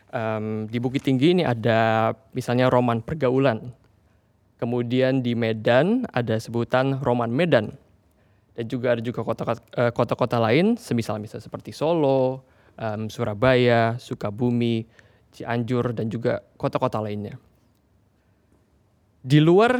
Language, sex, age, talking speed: Indonesian, male, 20-39, 110 wpm